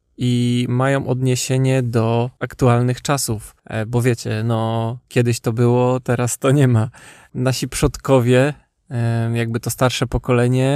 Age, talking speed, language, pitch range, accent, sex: 20-39, 125 wpm, Polish, 115-130 Hz, native, male